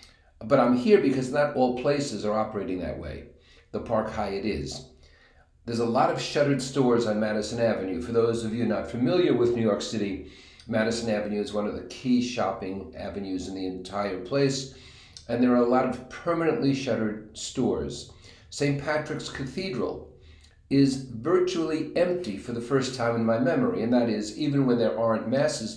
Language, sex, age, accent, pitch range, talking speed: English, male, 50-69, American, 105-135 Hz, 180 wpm